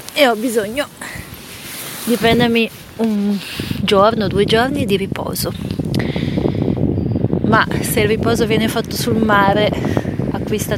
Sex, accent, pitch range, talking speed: female, native, 180-225 Hz, 110 wpm